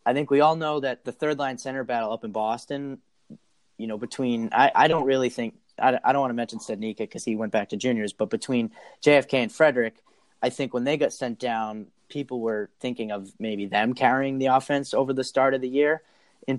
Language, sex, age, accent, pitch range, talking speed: English, male, 20-39, American, 115-140 Hz, 230 wpm